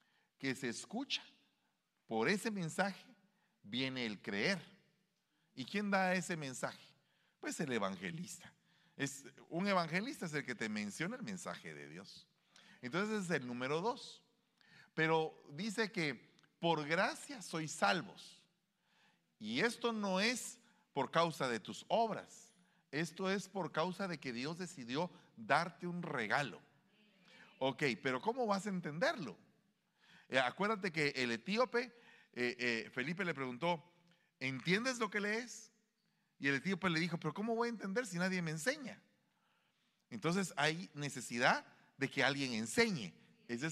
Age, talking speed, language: 40-59, 140 wpm, Spanish